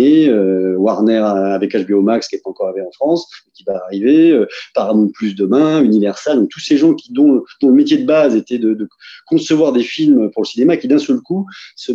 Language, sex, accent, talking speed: French, male, French, 215 wpm